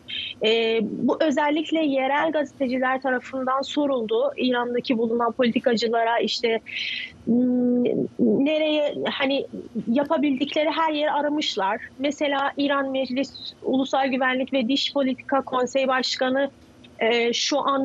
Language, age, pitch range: Turkish, 30-49, 260-300 Hz